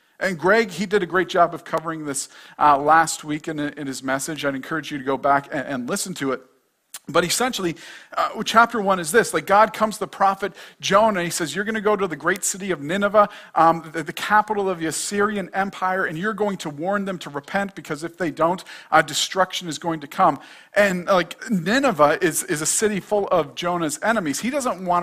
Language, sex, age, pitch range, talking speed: English, male, 40-59, 155-200 Hz, 230 wpm